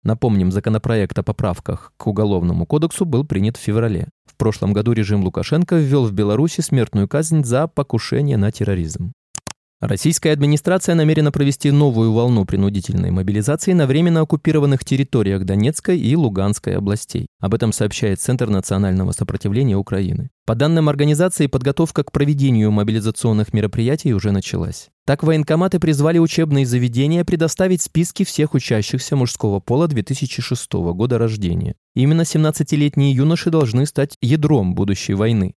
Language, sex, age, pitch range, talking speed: Russian, male, 20-39, 105-150 Hz, 135 wpm